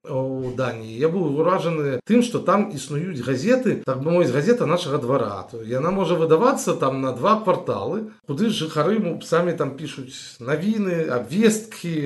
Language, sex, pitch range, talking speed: Russian, male, 145-200 Hz, 150 wpm